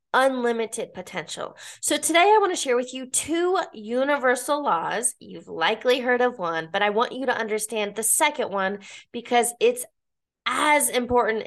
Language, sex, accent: English, female, American